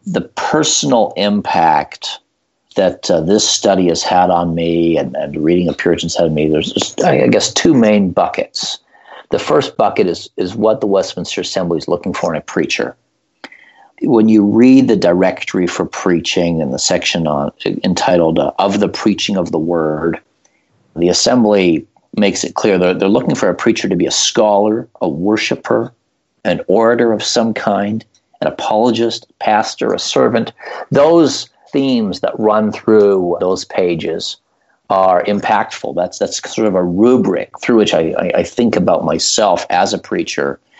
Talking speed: 165 wpm